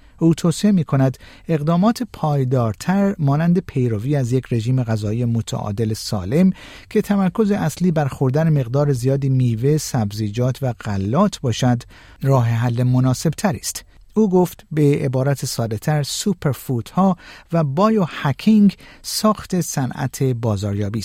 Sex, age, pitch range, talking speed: male, 50-69, 120-160 Hz, 125 wpm